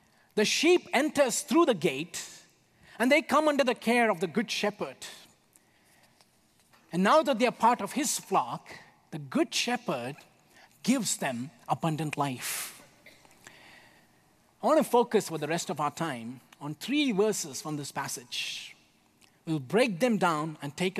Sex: male